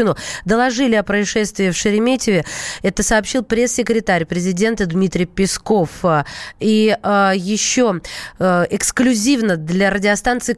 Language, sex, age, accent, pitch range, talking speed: Russian, female, 20-39, native, 185-235 Hz, 100 wpm